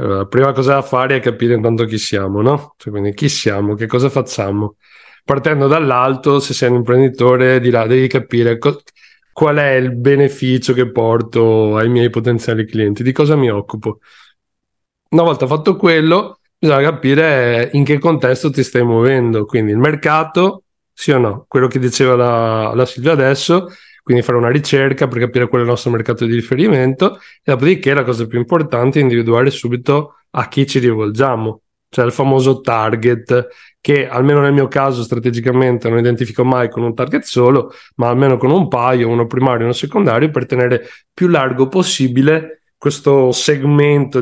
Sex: male